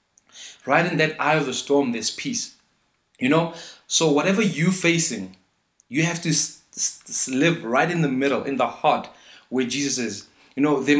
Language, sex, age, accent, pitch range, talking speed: English, male, 30-49, South African, 120-160 Hz, 185 wpm